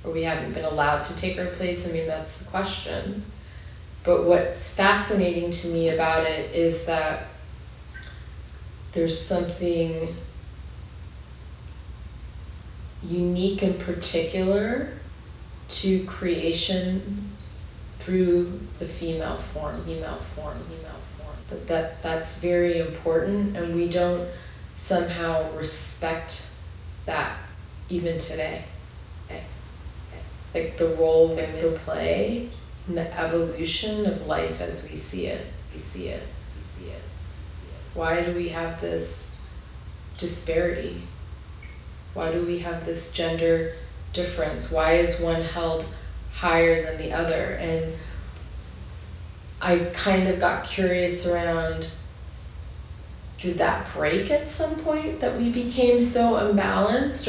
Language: English